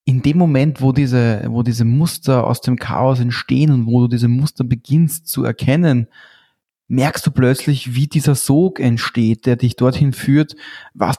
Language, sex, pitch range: German, male, 120-145 Hz